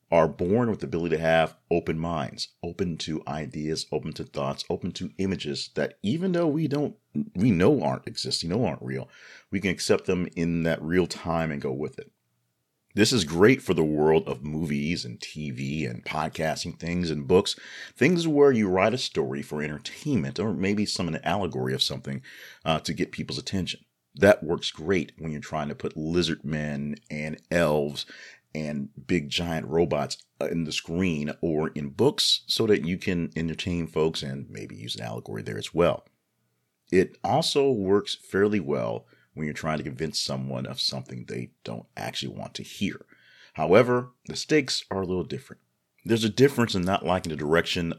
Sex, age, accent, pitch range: male, 40-59, American, 75-90 Hz